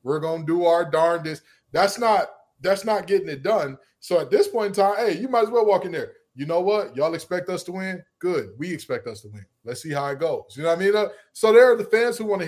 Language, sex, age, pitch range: English, male, 20-39, 130-175 Hz